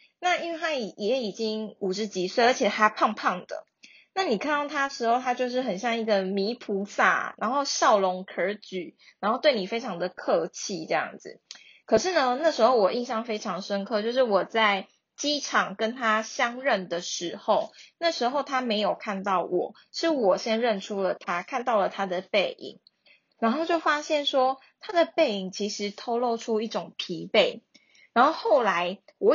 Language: Chinese